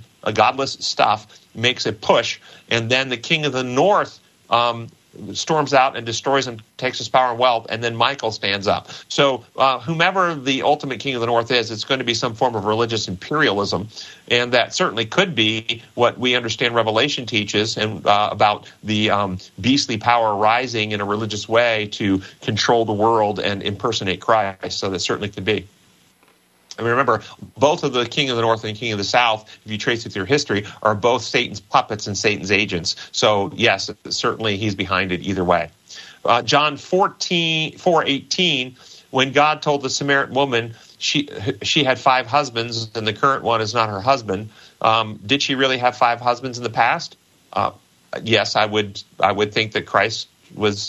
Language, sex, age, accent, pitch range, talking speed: English, male, 40-59, American, 105-130 Hz, 190 wpm